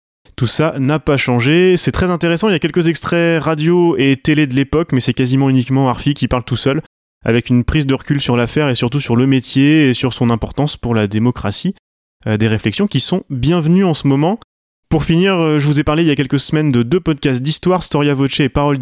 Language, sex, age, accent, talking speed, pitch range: French, male, 20-39, French, 240 wpm, 125-155 Hz